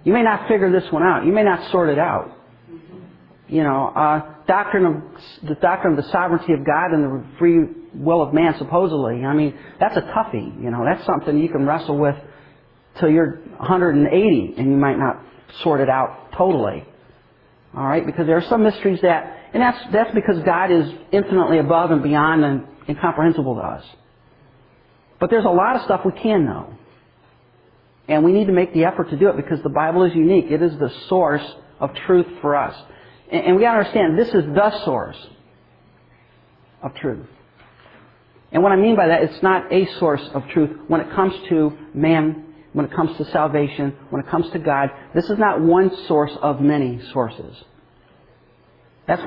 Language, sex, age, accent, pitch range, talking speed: English, male, 40-59, American, 145-180 Hz, 190 wpm